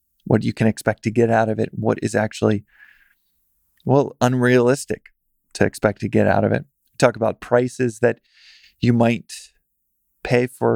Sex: male